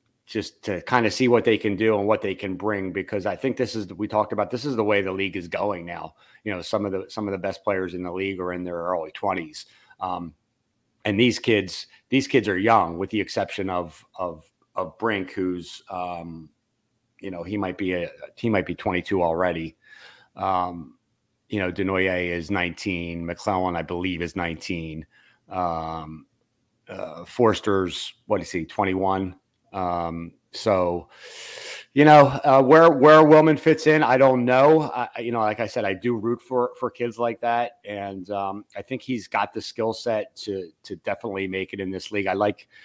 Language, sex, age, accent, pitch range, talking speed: English, male, 30-49, American, 95-120 Hz, 200 wpm